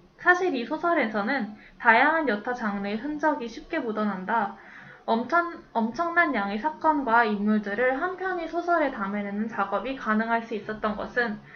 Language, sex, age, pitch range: Korean, female, 10-29, 215-295 Hz